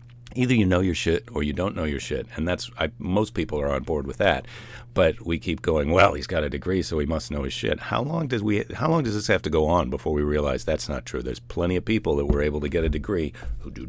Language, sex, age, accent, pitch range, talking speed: English, male, 50-69, American, 80-120 Hz, 290 wpm